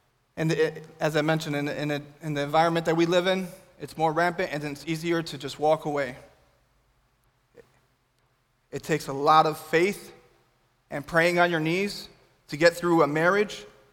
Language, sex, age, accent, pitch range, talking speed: English, male, 20-39, American, 140-165 Hz, 165 wpm